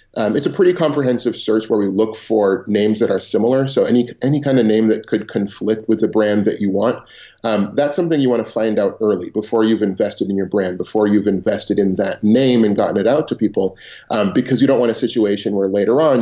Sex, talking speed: male, 245 wpm